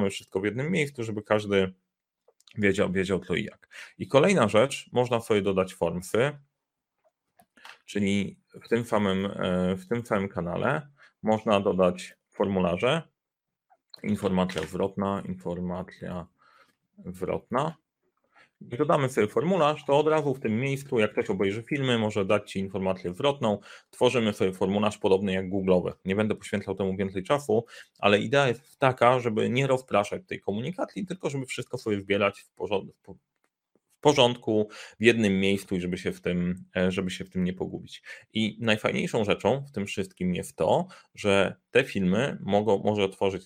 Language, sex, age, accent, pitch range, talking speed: Polish, male, 30-49, native, 95-120 Hz, 150 wpm